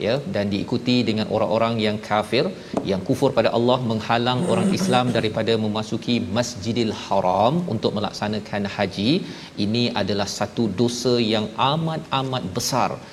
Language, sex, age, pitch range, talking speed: Malayalam, male, 40-59, 105-125 Hz, 130 wpm